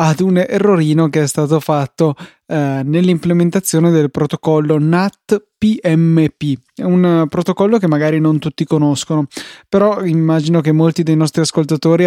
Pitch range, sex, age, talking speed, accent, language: 150-170 Hz, male, 20-39, 140 wpm, native, Italian